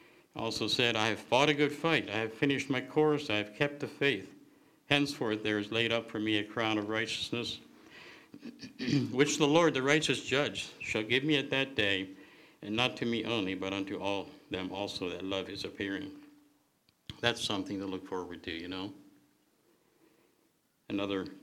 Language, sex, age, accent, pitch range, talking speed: English, male, 60-79, American, 100-125 Hz, 180 wpm